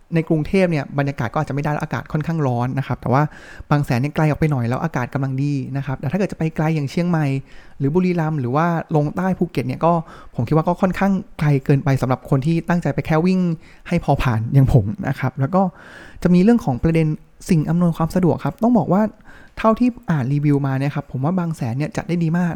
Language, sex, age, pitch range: Thai, male, 20-39, 140-180 Hz